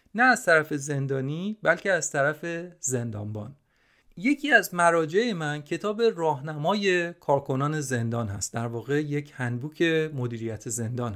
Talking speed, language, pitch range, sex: 125 wpm, Persian, 130-200 Hz, male